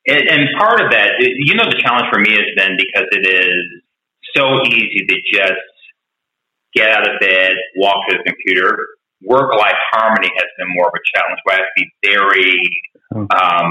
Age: 30-49